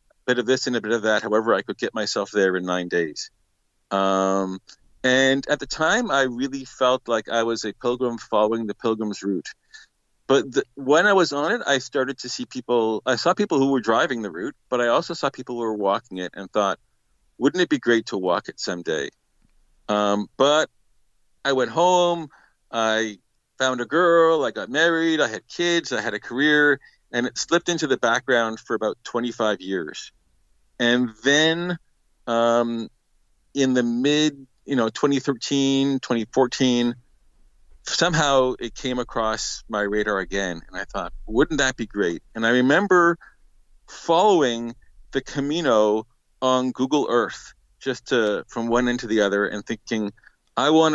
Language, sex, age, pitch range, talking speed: English, male, 40-59, 110-140 Hz, 175 wpm